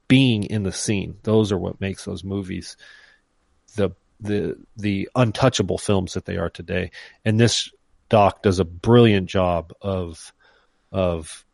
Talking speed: 145 wpm